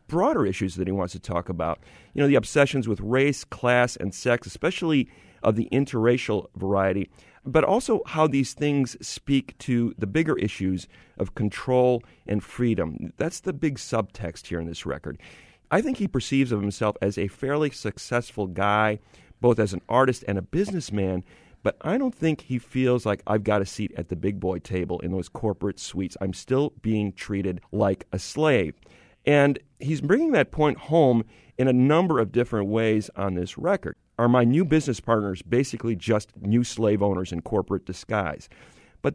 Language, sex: English, male